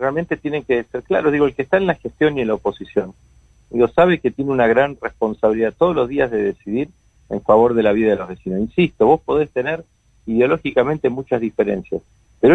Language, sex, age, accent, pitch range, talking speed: Spanish, male, 40-59, Argentinian, 110-145 Hz, 210 wpm